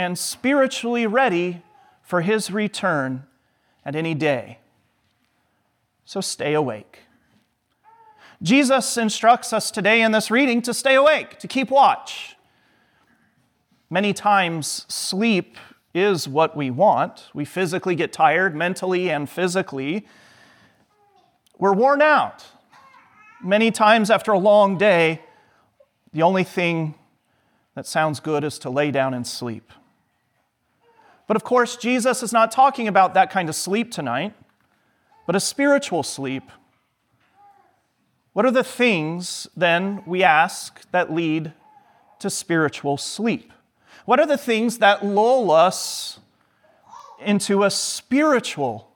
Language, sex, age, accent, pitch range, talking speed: English, male, 40-59, American, 165-240 Hz, 120 wpm